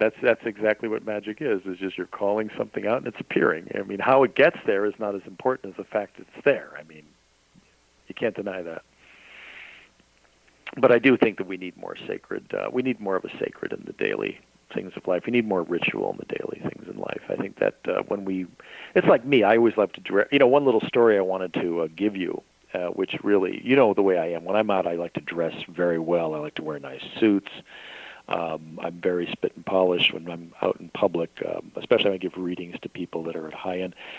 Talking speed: 245 wpm